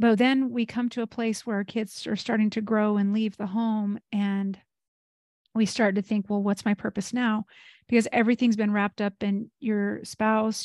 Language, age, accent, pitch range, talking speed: English, 40-59, American, 200-225 Hz, 205 wpm